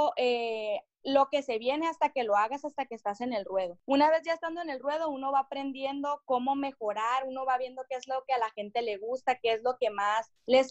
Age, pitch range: 20-39, 235-275 Hz